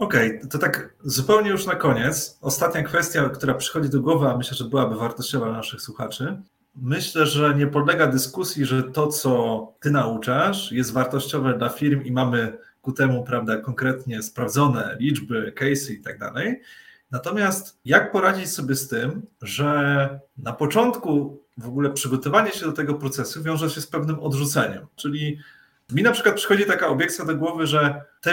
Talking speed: 165 wpm